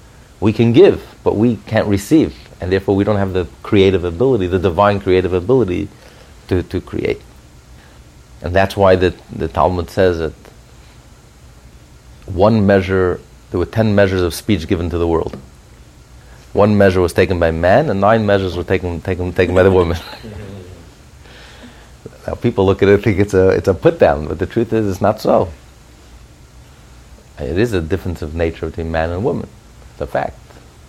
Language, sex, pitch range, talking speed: English, male, 75-110 Hz, 175 wpm